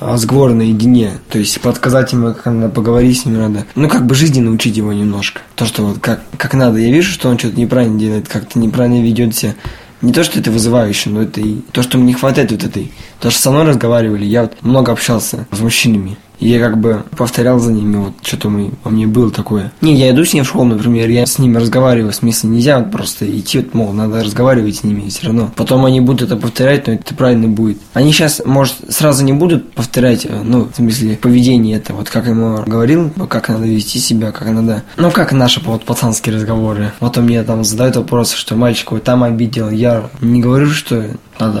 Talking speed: 220 wpm